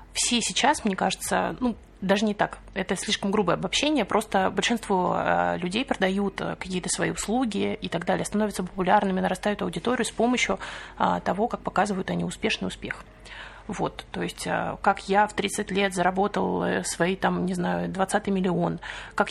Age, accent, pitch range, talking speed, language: 30-49, native, 185-215 Hz, 155 wpm, Russian